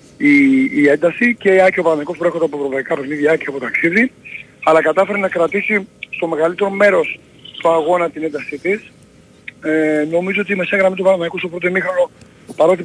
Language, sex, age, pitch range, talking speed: Greek, male, 40-59, 145-190 Hz, 175 wpm